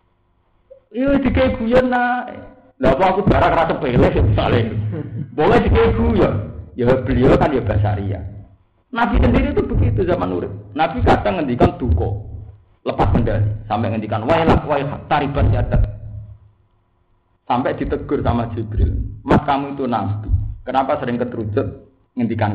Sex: male